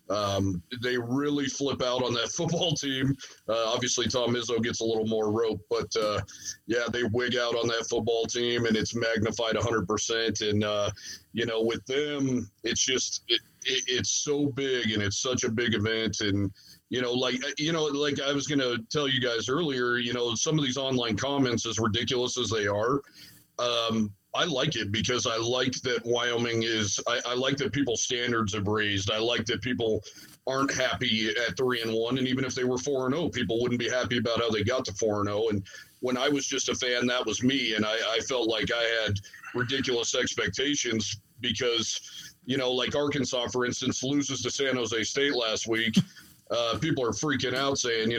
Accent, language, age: American, English, 40-59